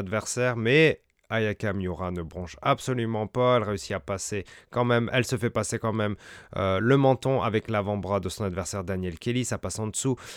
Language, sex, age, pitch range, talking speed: French, male, 30-49, 95-120 Hz, 195 wpm